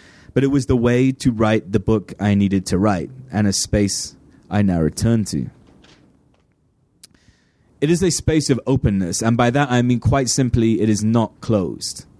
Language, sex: English, male